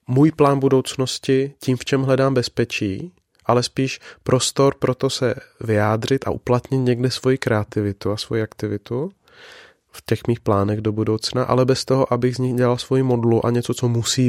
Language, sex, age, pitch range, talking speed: Czech, male, 20-39, 115-135 Hz, 175 wpm